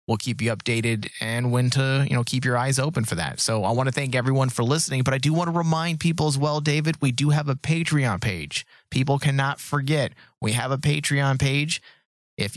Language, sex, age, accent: English, male, 30-49, American